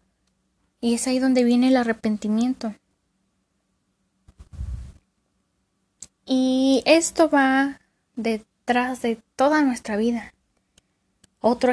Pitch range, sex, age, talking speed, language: 215-250 Hz, female, 10-29, 80 wpm, Spanish